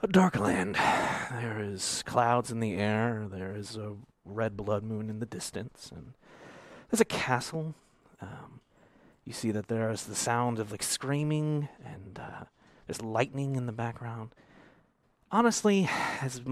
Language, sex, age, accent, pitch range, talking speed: English, male, 30-49, American, 120-185 Hz, 155 wpm